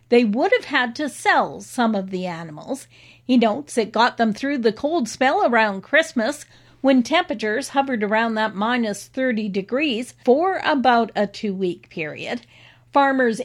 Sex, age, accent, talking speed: female, 50-69, American, 155 wpm